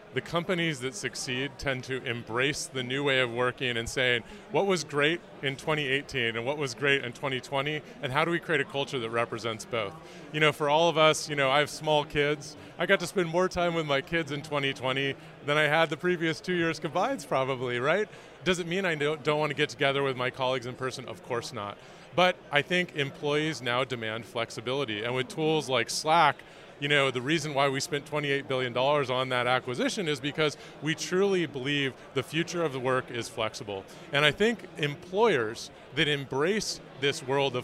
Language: English